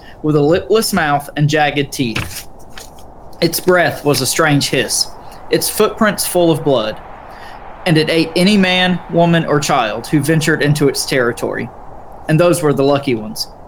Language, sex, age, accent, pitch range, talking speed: English, male, 20-39, American, 140-170 Hz, 160 wpm